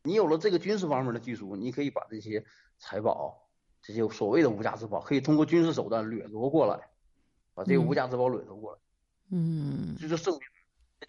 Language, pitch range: Chinese, 120-155 Hz